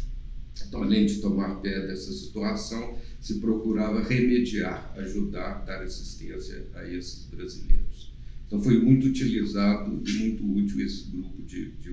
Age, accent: 50-69, Brazilian